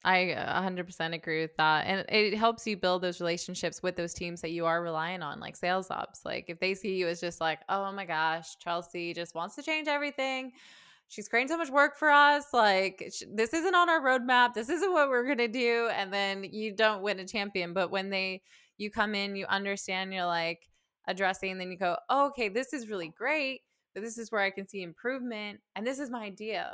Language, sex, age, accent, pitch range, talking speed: English, female, 20-39, American, 180-245 Hz, 225 wpm